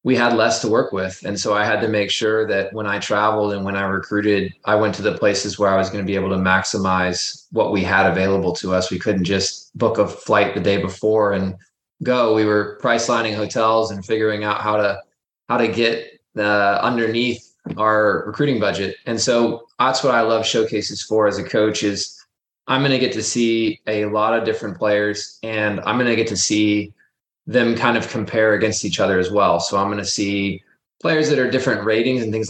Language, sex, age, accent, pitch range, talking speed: English, male, 20-39, American, 100-110 Hz, 225 wpm